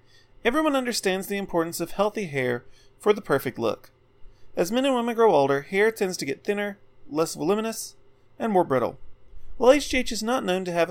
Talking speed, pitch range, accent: 185 wpm, 130-205 Hz, American